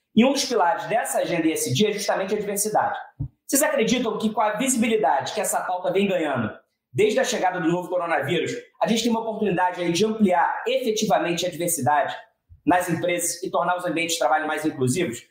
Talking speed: 200 wpm